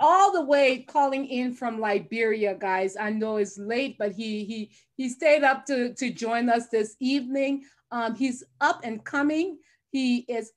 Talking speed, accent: 175 wpm, American